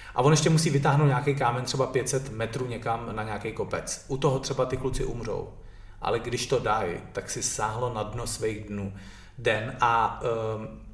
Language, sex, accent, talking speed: Czech, male, native, 185 wpm